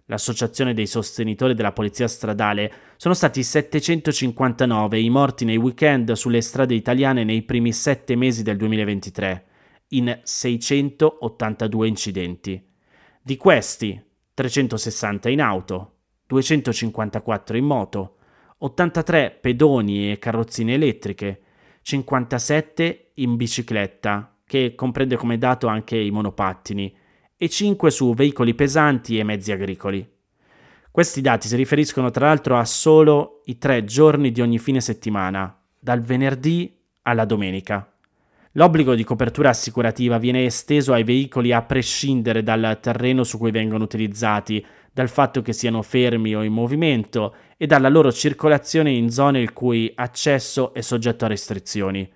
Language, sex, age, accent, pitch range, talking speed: Italian, male, 30-49, native, 110-135 Hz, 130 wpm